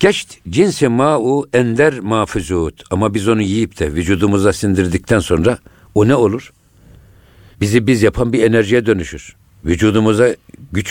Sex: male